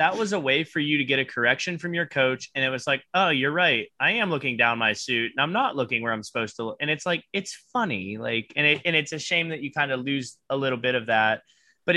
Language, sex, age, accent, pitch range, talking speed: English, male, 20-39, American, 130-155 Hz, 290 wpm